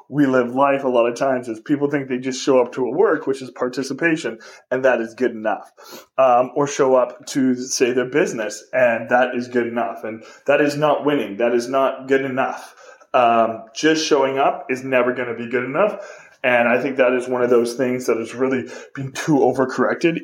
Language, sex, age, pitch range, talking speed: English, male, 20-39, 125-155 Hz, 220 wpm